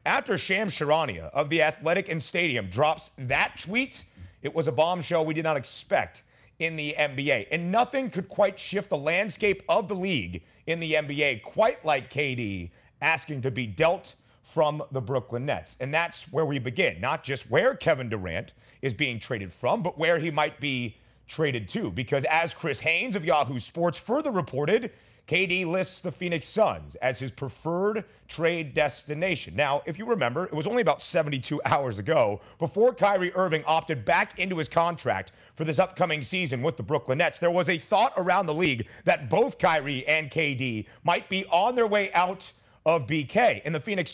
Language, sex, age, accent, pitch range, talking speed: English, male, 30-49, American, 135-180 Hz, 185 wpm